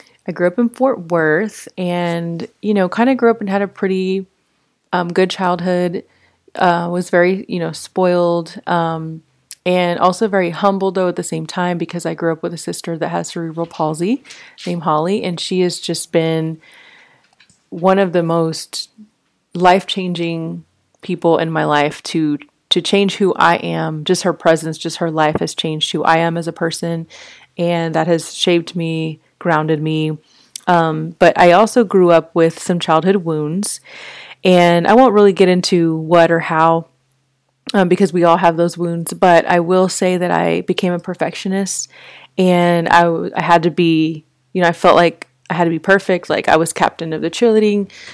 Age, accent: 30-49, American